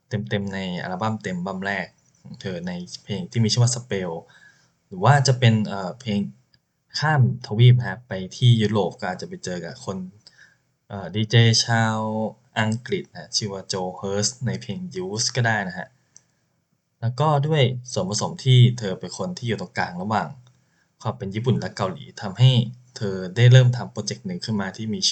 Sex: male